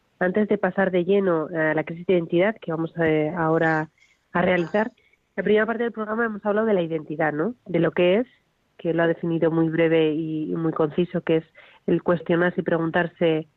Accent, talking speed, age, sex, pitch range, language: Spanish, 215 wpm, 30-49, female, 160-190 Hz, Spanish